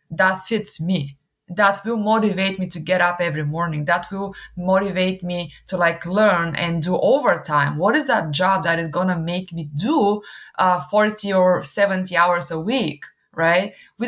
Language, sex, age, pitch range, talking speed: English, female, 20-39, 170-215 Hz, 180 wpm